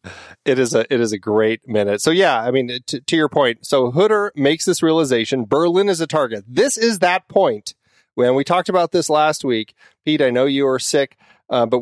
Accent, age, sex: American, 30-49, male